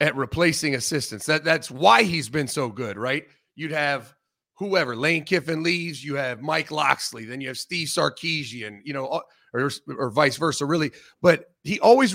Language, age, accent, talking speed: English, 30-49, American, 180 wpm